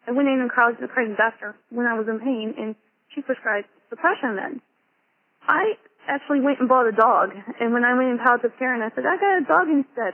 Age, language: 30-49, English